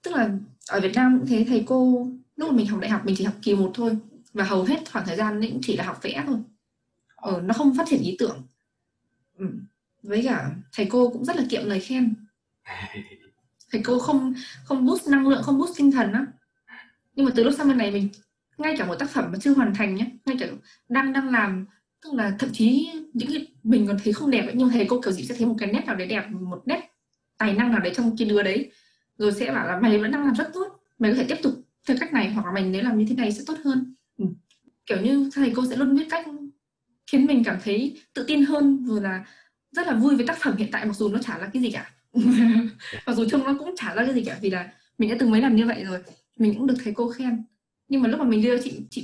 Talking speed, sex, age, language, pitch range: 265 wpm, female, 10-29, Vietnamese, 215-270 Hz